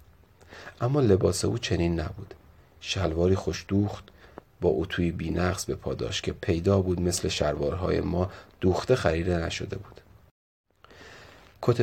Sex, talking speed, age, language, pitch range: male, 120 wpm, 30-49, Persian, 85-100 Hz